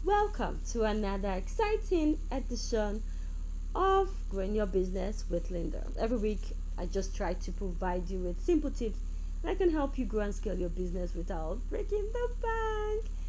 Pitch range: 160-230 Hz